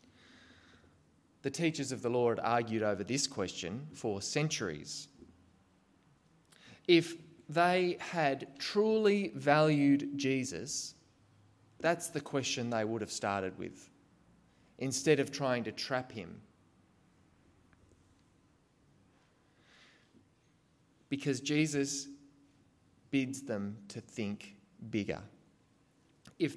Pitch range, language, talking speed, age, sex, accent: 125-165 Hz, English, 90 wpm, 20-39, male, Australian